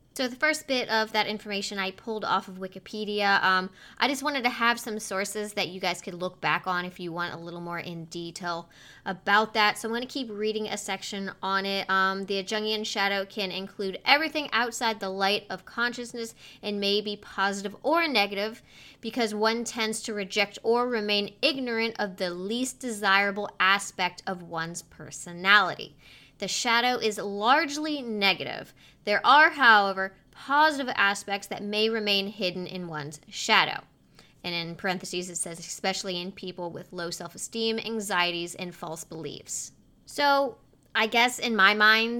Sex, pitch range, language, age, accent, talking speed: female, 190-235 Hz, English, 20-39, American, 170 wpm